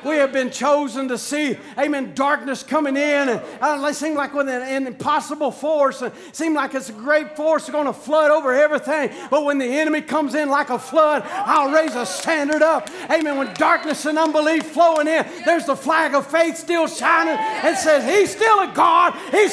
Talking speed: 195 wpm